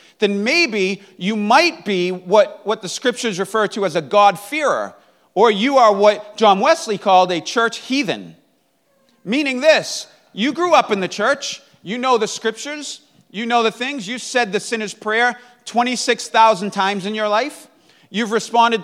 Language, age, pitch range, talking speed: English, 40-59, 190-245 Hz, 165 wpm